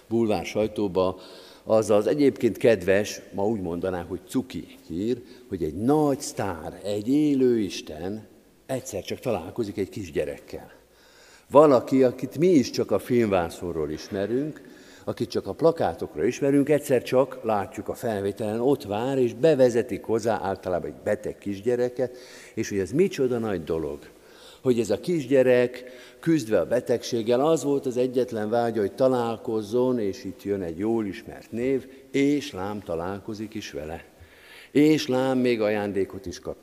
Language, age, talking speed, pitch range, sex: Hungarian, 50-69, 145 wpm, 95-130 Hz, male